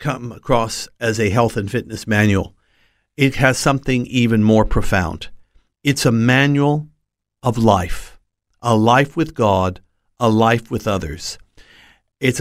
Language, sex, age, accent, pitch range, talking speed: English, male, 50-69, American, 110-135 Hz, 135 wpm